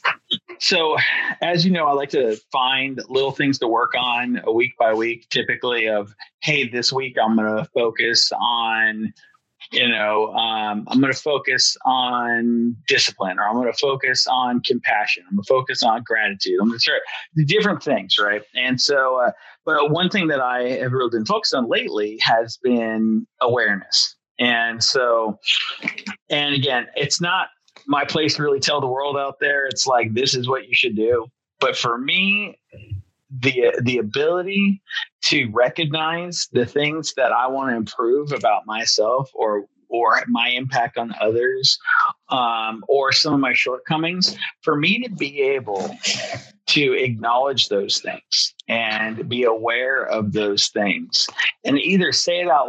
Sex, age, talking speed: male, 30-49, 165 wpm